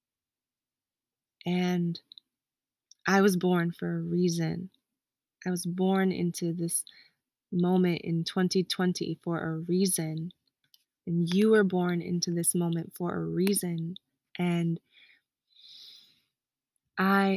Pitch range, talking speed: 175-200 Hz, 105 wpm